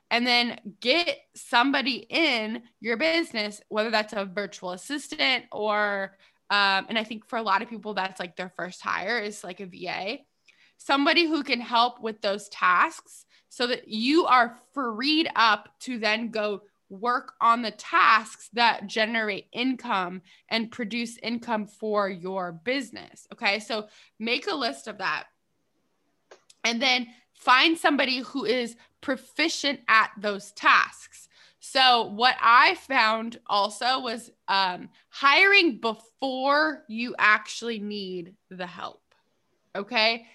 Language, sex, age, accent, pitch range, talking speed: English, female, 20-39, American, 210-255 Hz, 135 wpm